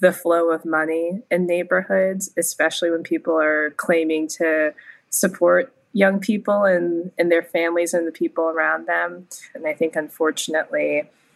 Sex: female